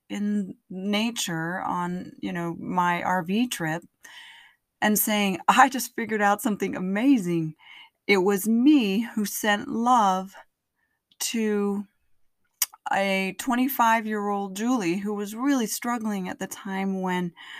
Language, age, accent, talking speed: English, 30-49, American, 115 wpm